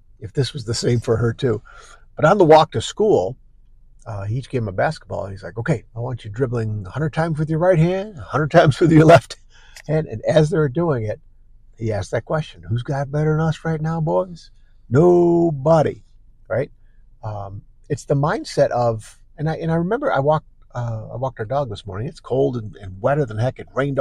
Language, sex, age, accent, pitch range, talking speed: English, male, 50-69, American, 110-150 Hz, 215 wpm